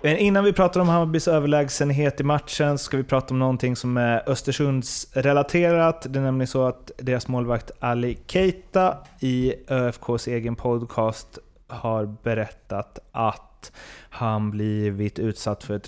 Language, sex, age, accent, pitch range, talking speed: Swedish, male, 30-49, native, 105-130 Hz, 145 wpm